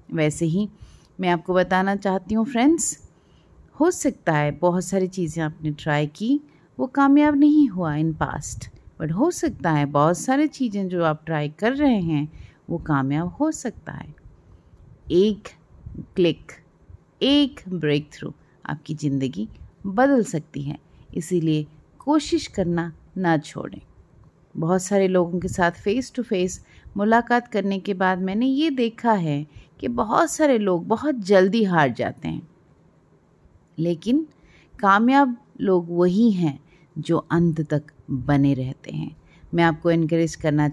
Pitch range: 155-225 Hz